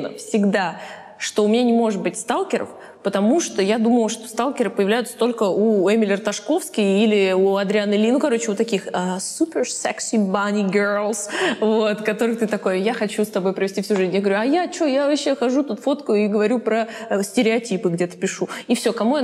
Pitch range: 205-245 Hz